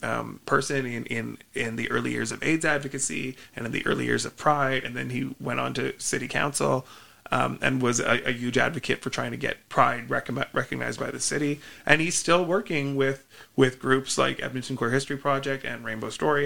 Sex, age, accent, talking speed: male, 30-49, American, 210 wpm